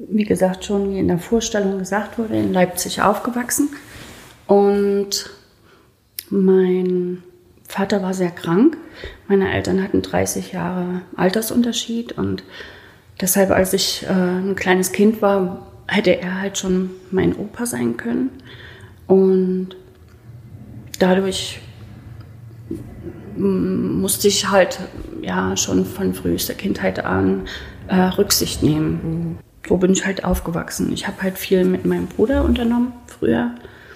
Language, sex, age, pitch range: German, female, 30-49, 155-195 Hz